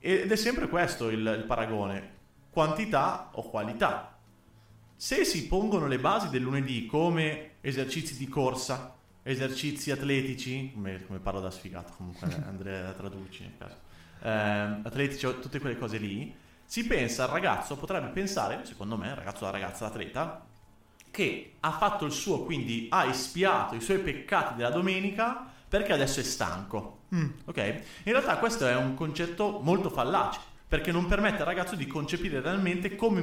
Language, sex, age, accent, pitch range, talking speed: Italian, male, 30-49, native, 110-175 Hz, 165 wpm